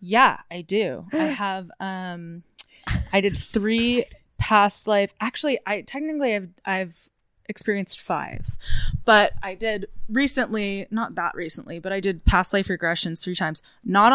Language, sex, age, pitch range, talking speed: English, female, 20-39, 180-210 Hz, 155 wpm